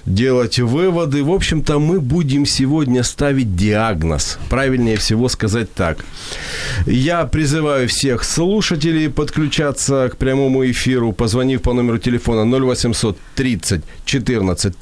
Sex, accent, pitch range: male, native, 110-150 Hz